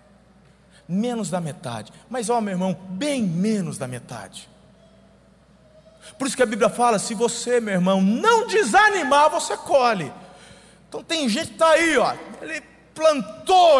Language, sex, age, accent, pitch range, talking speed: Portuguese, male, 40-59, Brazilian, 200-300 Hz, 150 wpm